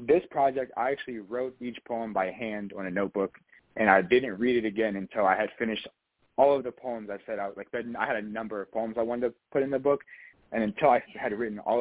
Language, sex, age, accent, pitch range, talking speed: English, male, 20-39, American, 105-130 Hz, 245 wpm